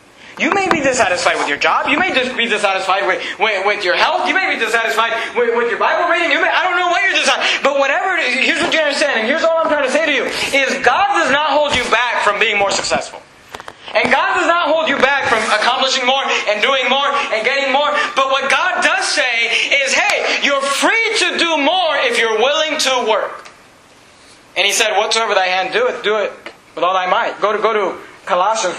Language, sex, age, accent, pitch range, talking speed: English, male, 30-49, American, 200-295 Hz, 225 wpm